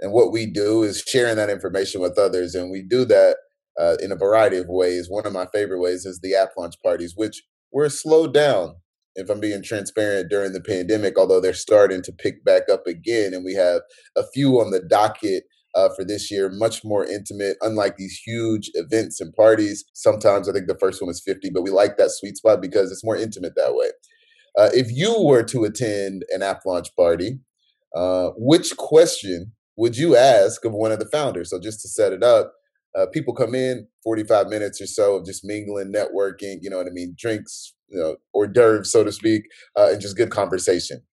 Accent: American